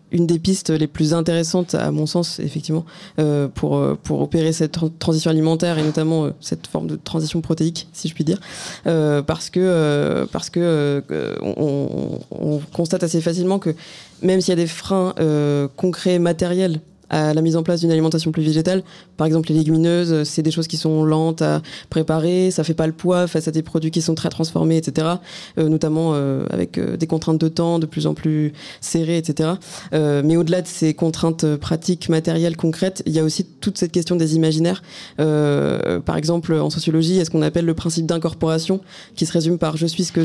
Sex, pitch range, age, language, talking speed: female, 160-175 Hz, 20-39, French, 210 wpm